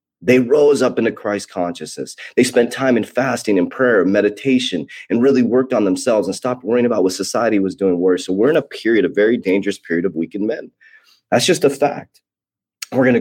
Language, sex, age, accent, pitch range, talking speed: English, male, 30-49, American, 100-140 Hz, 215 wpm